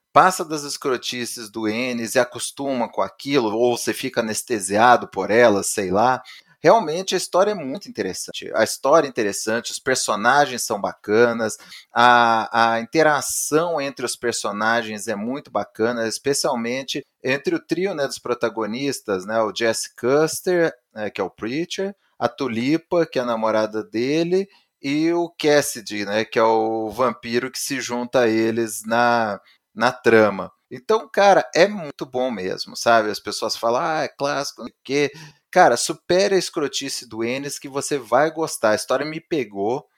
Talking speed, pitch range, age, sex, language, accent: 160 wpm, 115-155 Hz, 30-49, male, Portuguese, Brazilian